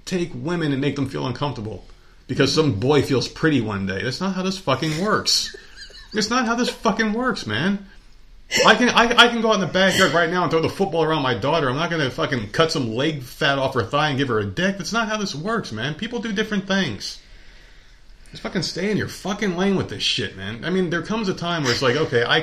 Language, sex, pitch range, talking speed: English, male, 135-205 Hz, 255 wpm